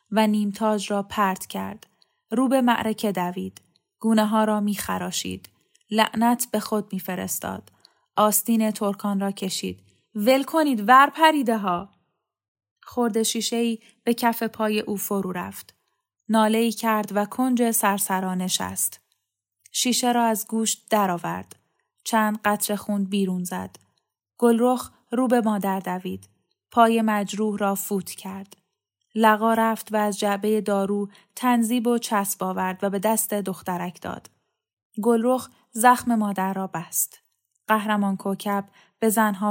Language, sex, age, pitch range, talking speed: Persian, female, 10-29, 195-230 Hz, 130 wpm